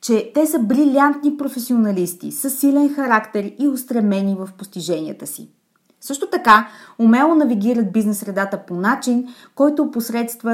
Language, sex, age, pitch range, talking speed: Bulgarian, female, 20-39, 200-280 Hz, 125 wpm